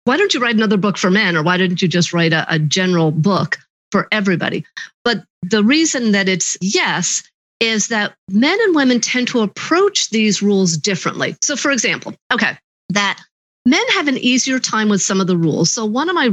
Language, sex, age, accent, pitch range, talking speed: English, female, 40-59, American, 175-240 Hz, 205 wpm